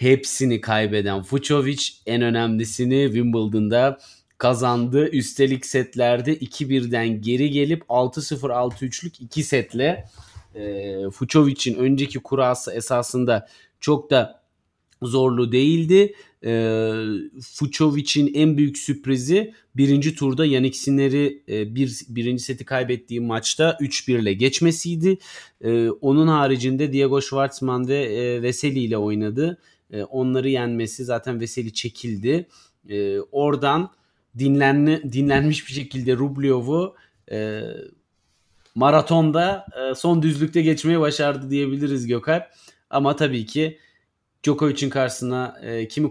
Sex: male